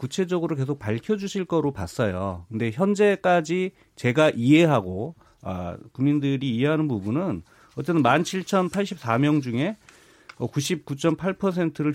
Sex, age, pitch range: male, 30-49, 115-170 Hz